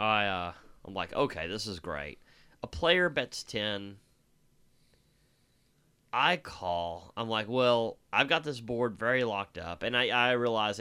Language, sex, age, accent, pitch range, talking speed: English, male, 30-49, American, 95-125 Hz, 155 wpm